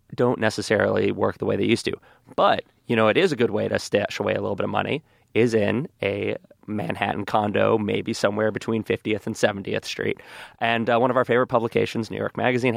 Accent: American